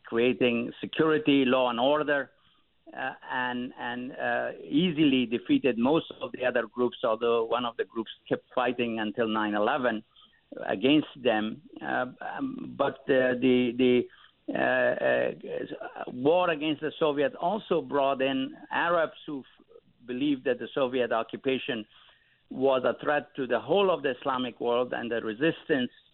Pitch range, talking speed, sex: 120-145 Hz, 145 wpm, male